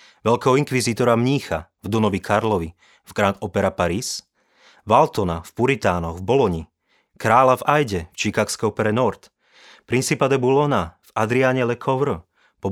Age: 30-49